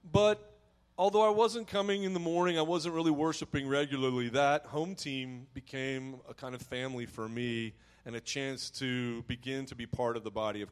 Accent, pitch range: American, 125-180 Hz